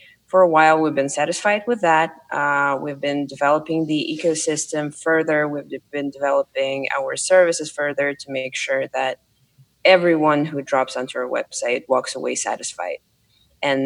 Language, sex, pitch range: English, female, 135-155 Hz